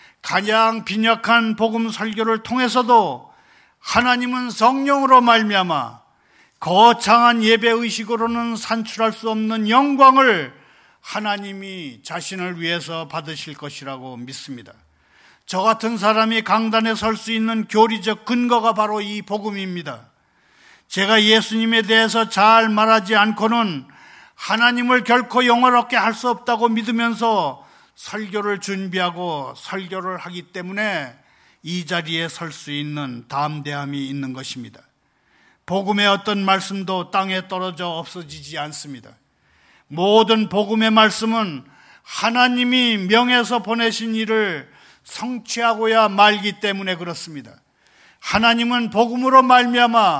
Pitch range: 180-230 Hz